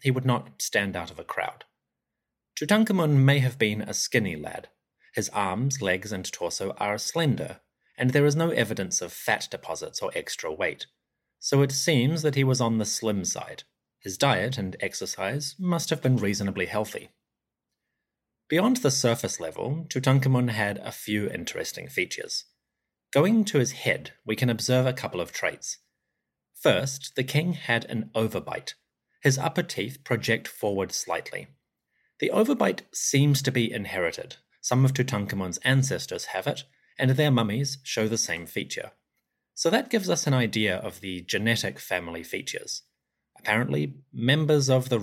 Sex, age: male, 30-49